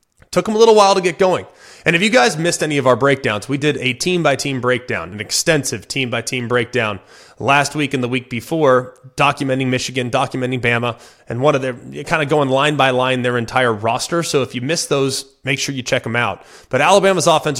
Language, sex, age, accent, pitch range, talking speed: English, male, 20-39, American, 125-150 Hz, 230 wpm